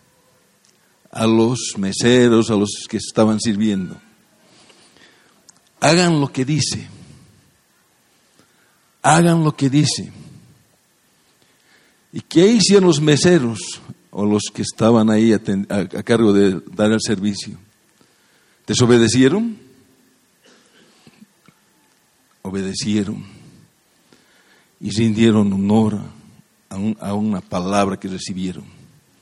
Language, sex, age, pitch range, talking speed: English, male, 60-79, 105-130 Hz, 95 wpm